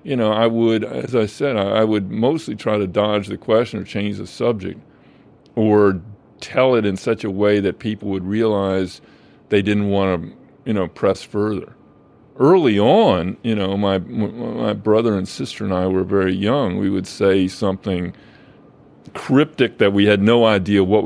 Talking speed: 180 wpm